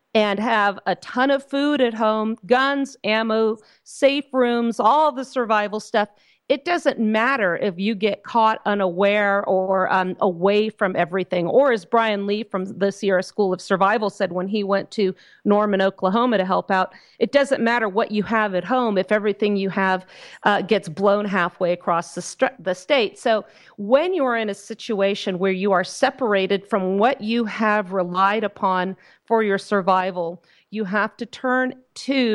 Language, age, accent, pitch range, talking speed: English, 40-59, American, 190-225 Hz, 175 wpm